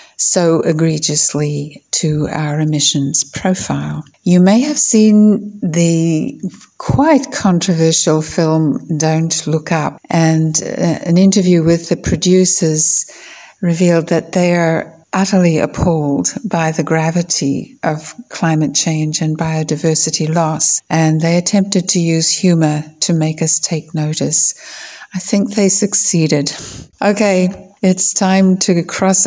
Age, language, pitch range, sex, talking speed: 60-79, English, 155-185 Hz, female, 120 wpm